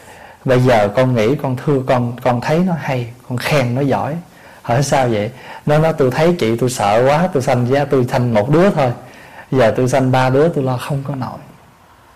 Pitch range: 115-145 Hz